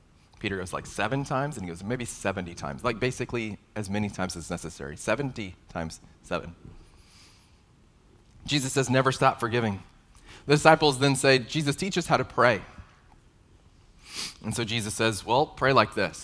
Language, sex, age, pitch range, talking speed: English, male, 30-49, 95-125 Hz, 165 wpm